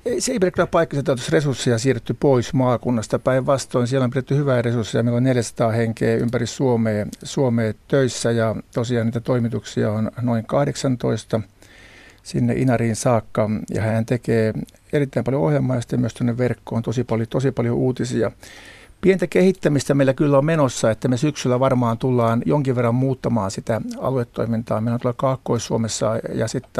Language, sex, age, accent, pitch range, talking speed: Finnish, male, 60-79, native, 115-130 Hz, 155 wpm